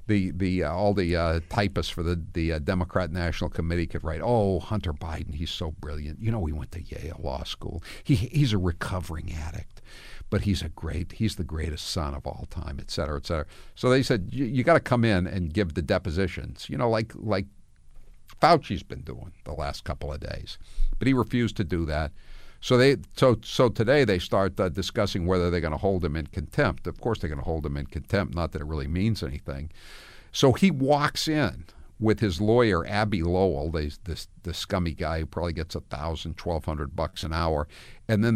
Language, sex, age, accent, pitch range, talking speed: English, male, 60-79, American, 80-105 Hz, 210 wpm